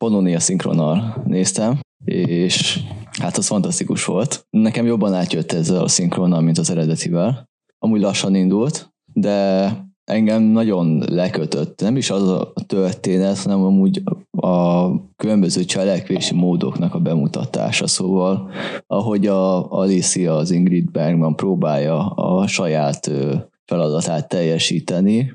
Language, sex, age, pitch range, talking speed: Hungarian, male, 20-39, 90-110 Hz, 120 wpm